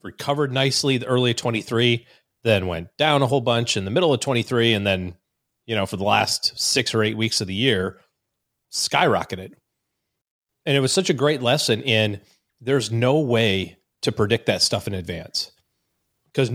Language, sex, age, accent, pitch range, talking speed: English, male, 30-49, American, 110-140 Hz, 180 wpm